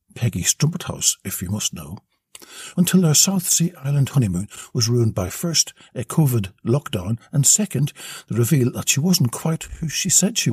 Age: 60-79